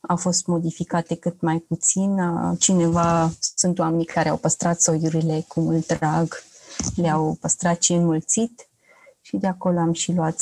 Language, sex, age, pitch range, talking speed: Romanian, female, 30-49, 165-195 Hz, 150 wpm